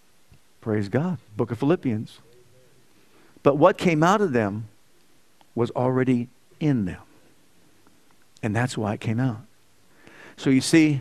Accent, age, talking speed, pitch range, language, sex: American, 50-69, 130 wpm, 115-160 Hz, English, male